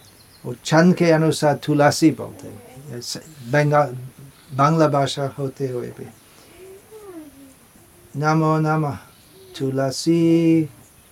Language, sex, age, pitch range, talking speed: Hindi, male, 50-69, 110-155 Hz, 75 wpm